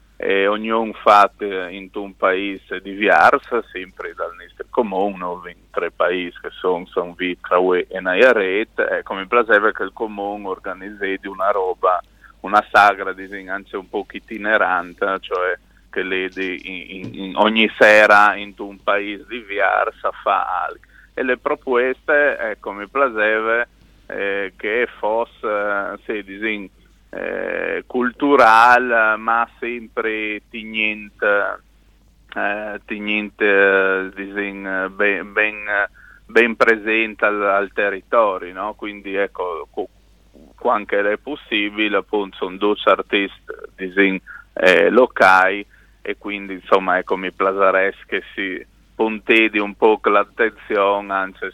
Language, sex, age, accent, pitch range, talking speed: Italian, male, 30-49, native, 95-110 Hz, 120 wpm